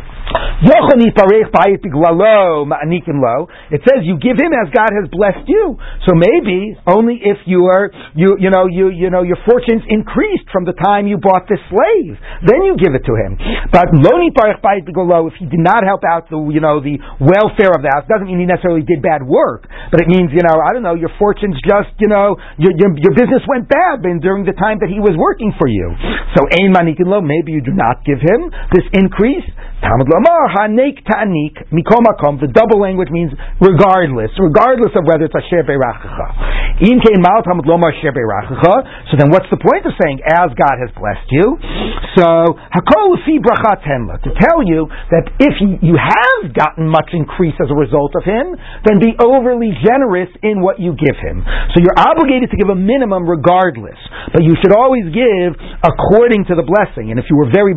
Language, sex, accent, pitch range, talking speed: English, male, American, 165-210 Hz, 170 wpm